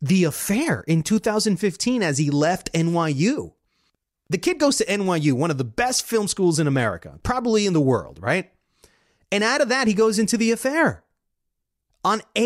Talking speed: 175 wpm